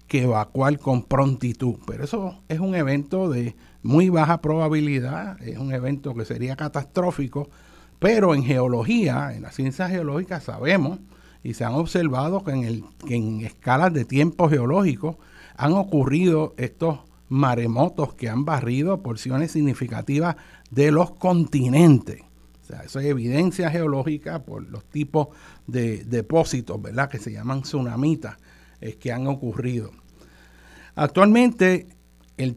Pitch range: 120-160 Hz